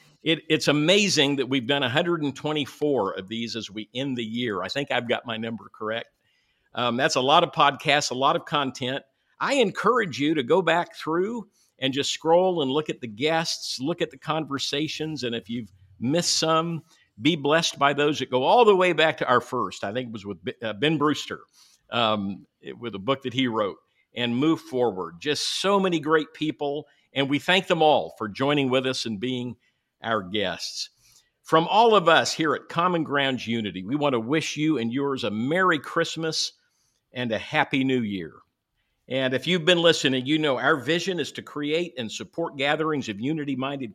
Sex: male